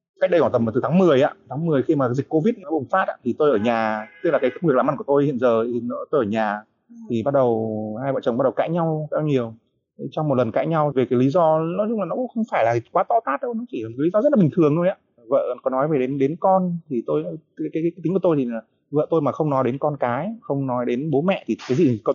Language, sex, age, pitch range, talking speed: Vietnamese, male, 20-39, 120-155 Hz, 305 wpm